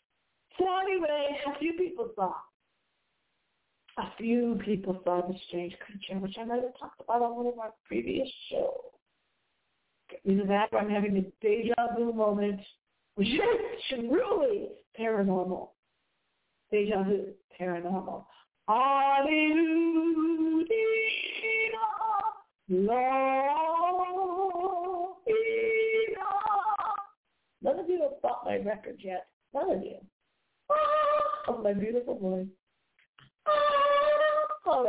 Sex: female